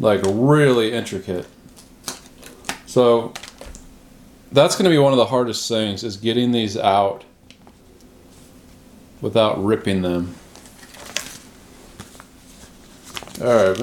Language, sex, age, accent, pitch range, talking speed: English, male, 40-59, American, 110-145 Hz, 90 wpm